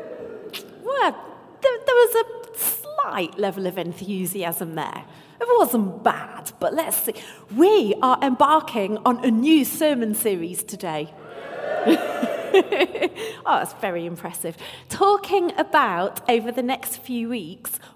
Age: 40-59